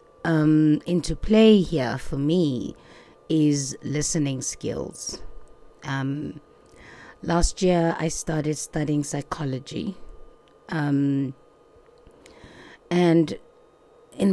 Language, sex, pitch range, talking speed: English, female, 145-180 Hz, 80 wpm